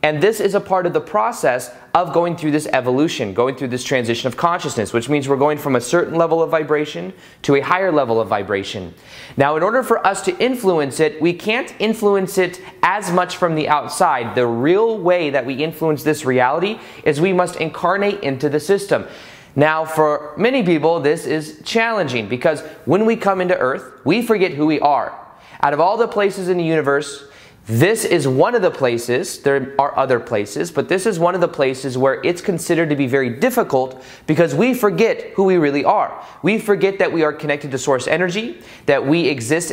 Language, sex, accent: English, male, American